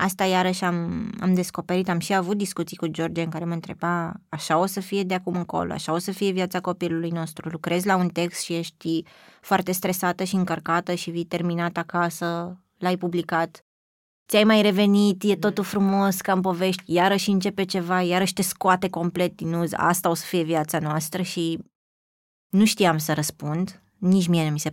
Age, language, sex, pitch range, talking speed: 20-39, Romanian, female, 170-190 Hz, 190 wpm